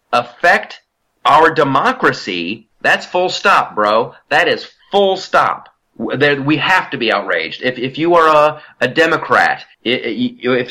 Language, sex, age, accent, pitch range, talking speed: English, male, 30-49, American, 125-165 Hz, 135 wpm